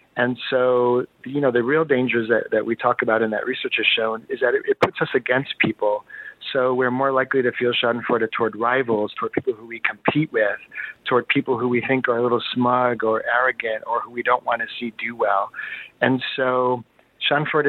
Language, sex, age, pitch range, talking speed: English, male, 40-59, 120-135 Hz, 215 wpm